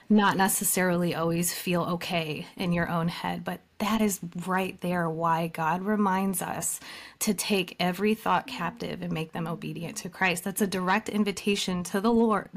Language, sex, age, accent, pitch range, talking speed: English, female, 30-49, American, 175-210 Hz, 170 wpm